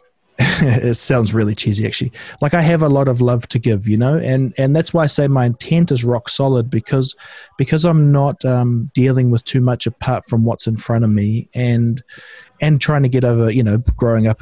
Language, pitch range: English, 115-145 Hz